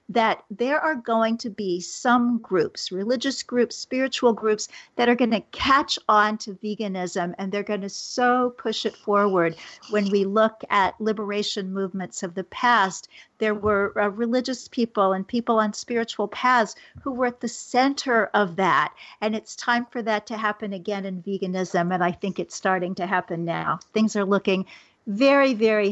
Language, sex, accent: English, female, American